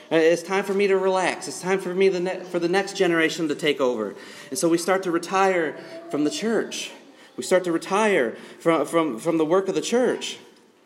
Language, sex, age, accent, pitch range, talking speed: English, male, 30-49, American, 165-220 Hz, 215 wpm